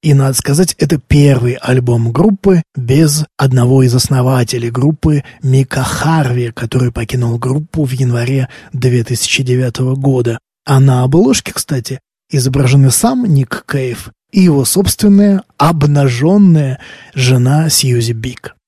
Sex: male